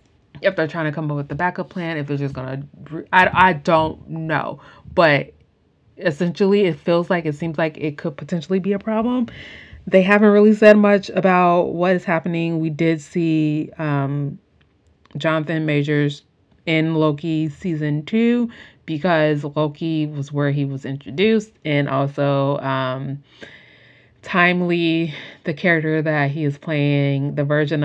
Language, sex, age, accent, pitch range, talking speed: English, female, 30-49, American, 145-180 Hz, 150 wpm